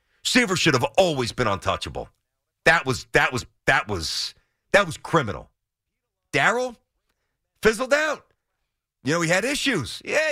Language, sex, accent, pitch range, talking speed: English, male, American, 140-220 Hz, 140 wpm